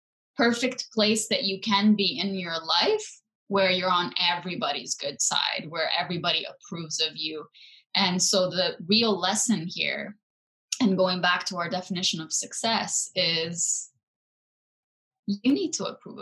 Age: 10-29